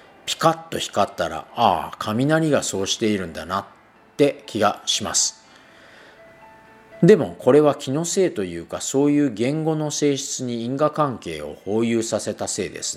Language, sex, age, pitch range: Japanese, male, 40-59, 105-150 Hz